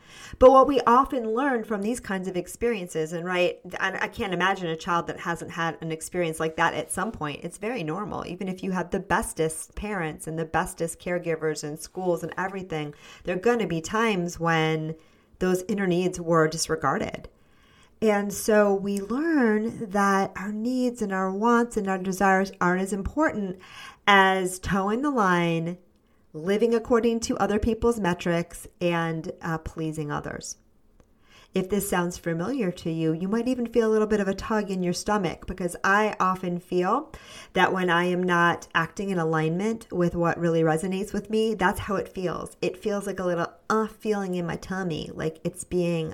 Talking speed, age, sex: 185 wpm, 40-59, female